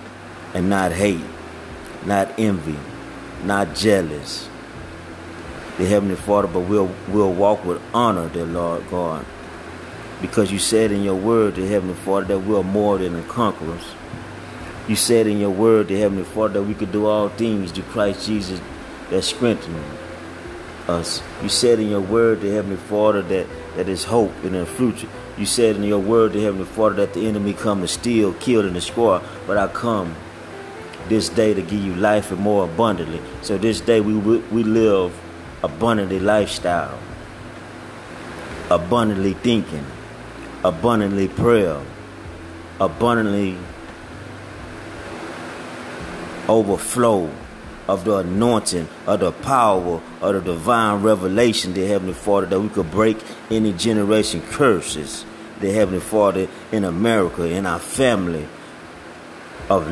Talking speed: 140 wpm